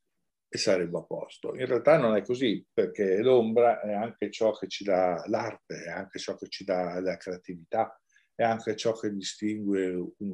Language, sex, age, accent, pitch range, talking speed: Italian, male, 50-69, native, 90-115 Hz, 185 wpm